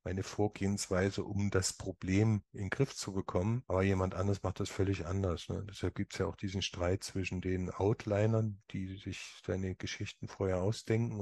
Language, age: German, 50-69